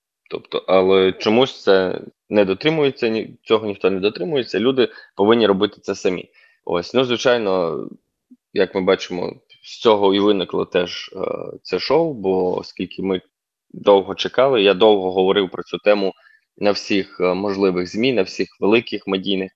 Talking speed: 145 wpm